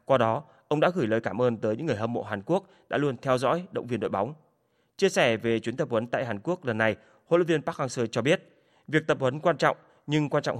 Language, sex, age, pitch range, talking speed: Vietnamese, male, 20-39, 120-150 Hz, 275 wpm